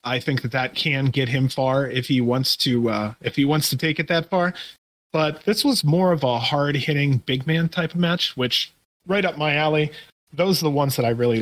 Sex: male